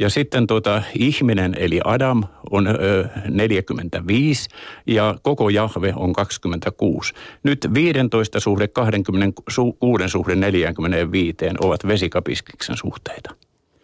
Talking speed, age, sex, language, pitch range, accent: 90 wpm, 50-69, male, Finnish, 95-115 Hz, native